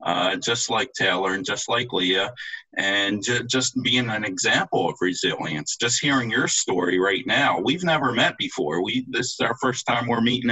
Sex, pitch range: male, 100-150 Hz